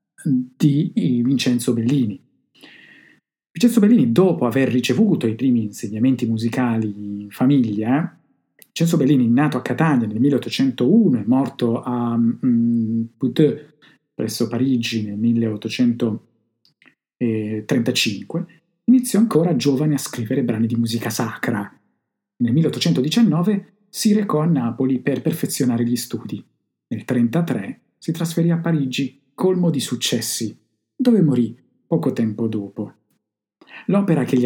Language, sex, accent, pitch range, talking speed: Italian, male, native, 115-150 Hz, 115 wpm